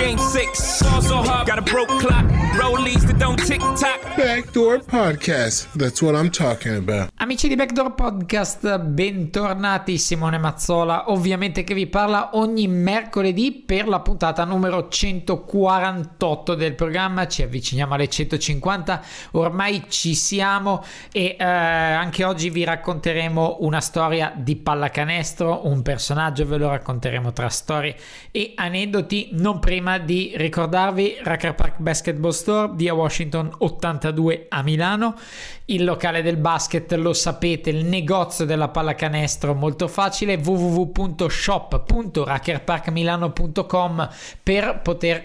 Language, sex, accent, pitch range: Italian, male, native, 160-195 Hz